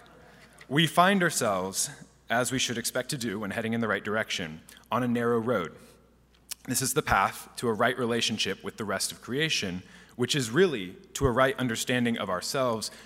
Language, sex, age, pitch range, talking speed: English, male, 30-49, 115-150 Hz, 190 wpm